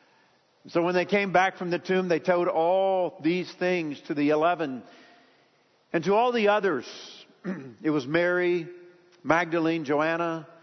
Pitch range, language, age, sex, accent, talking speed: 135-175 Hz, English, 50-69, male, American, 145 wpm